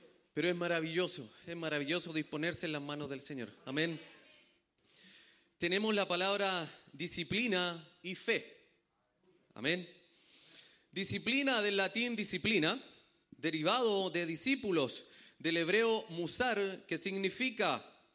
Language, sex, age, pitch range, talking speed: Spanish, male, 40-59, 160-205 Hz, 105 wpm